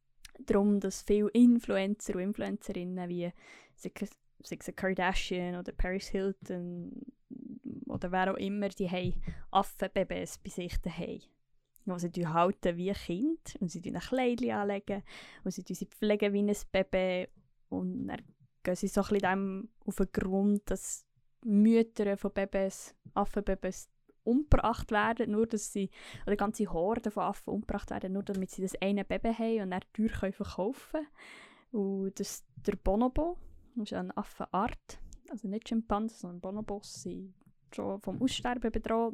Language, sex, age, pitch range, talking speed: German, female, 20-39, 190-225 Hz, 160 wpm